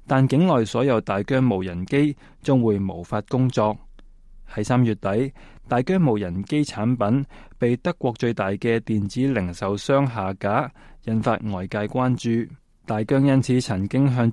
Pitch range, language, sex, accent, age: 105-135 Hz, Chinese, male, native, 20-39